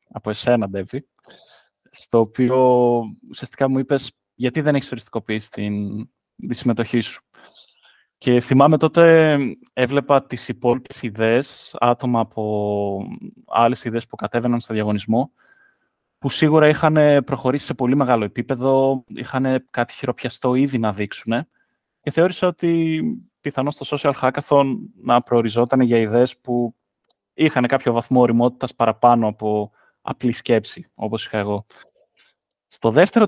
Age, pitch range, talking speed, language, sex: 20-39, 115-140 Hz, 125 wpm, Greek, male